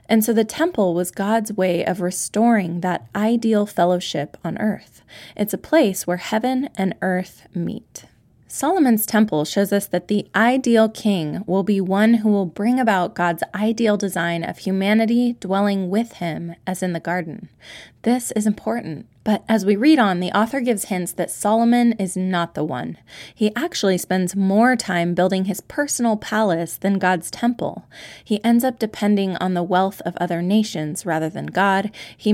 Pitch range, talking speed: 180-220 Hz, 175 wpm